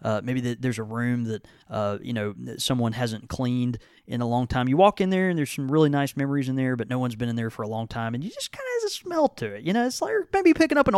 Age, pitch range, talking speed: 30-49, 115-155 Hz, 315 wpm